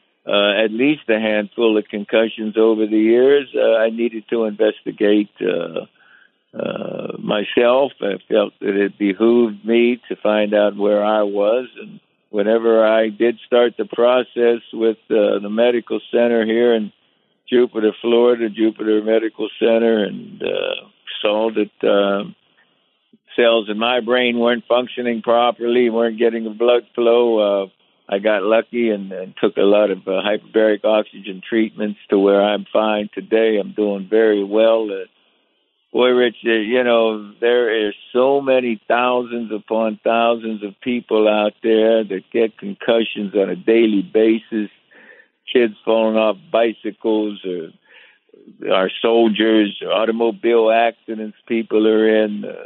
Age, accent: 60-79, American